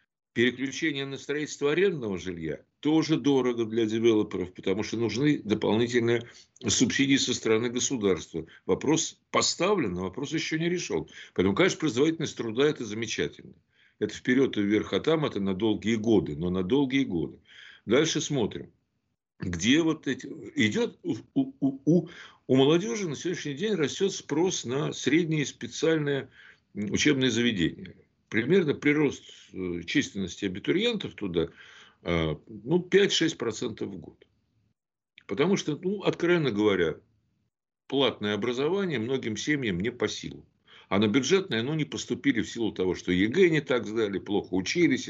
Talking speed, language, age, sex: 140 wpm, Russian, 60-79, male